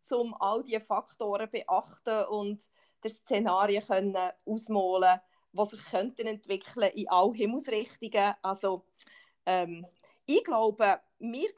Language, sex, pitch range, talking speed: German, female, 210-315 Hz, 120 wpm